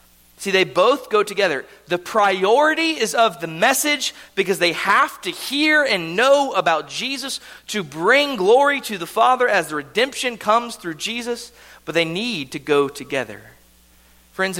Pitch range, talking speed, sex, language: 145-235 Hz, 160 wpm, male, English